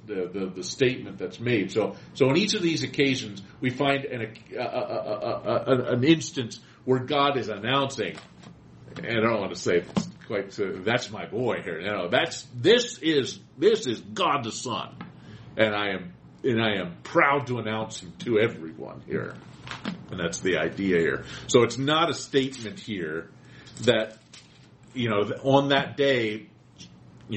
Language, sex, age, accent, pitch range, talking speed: English, male, 50-69, American, 80-130 Hz, 180 wpm